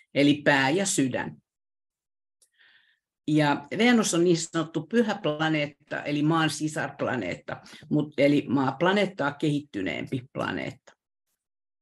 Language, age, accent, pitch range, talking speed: Finnish, 50-69, native, 140-180 Hz, 95 wpm